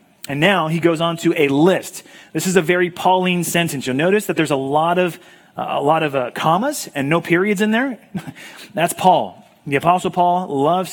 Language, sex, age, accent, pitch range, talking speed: English, male, 30-49, American, 150-190 Hz, 190 wpm